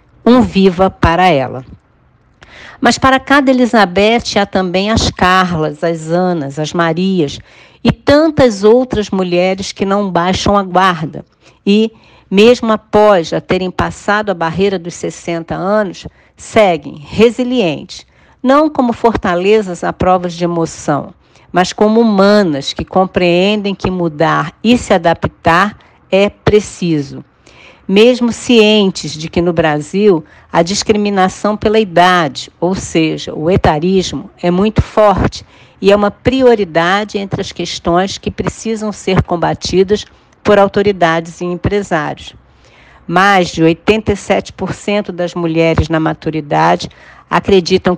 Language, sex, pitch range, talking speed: Portuguese, female, 170-210 Hz, 120 wpm